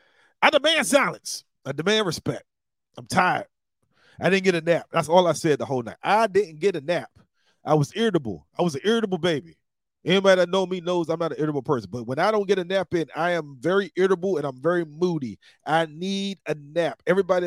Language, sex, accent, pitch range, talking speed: English, male, American, 140-180 Hz, 220 wpm